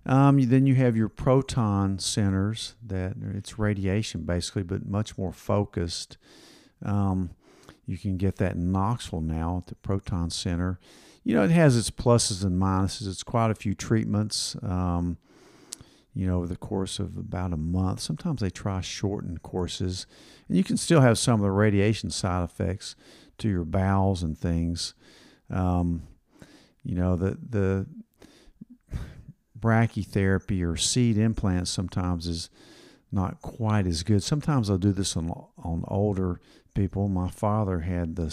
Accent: American